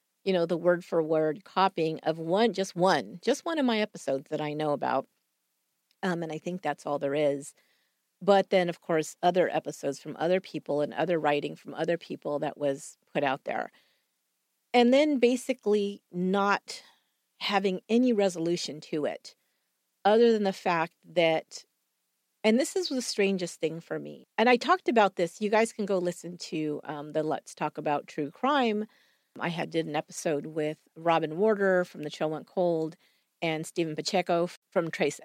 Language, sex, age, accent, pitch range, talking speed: English, female, 40-59, American, 155-200 Hz, 175 wpm